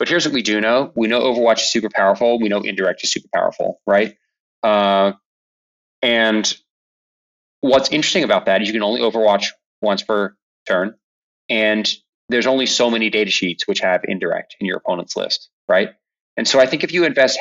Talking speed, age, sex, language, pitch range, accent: 190 wpm, 20-39, male, English, 105-160 Hz, American